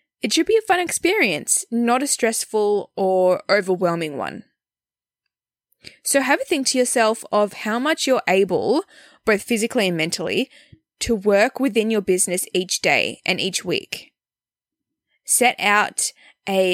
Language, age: English, 10-29